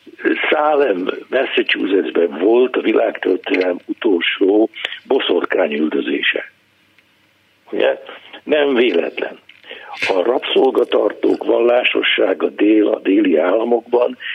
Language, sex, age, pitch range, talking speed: Hungarian, male, 60-79, 350-445 Hz, 75 wpm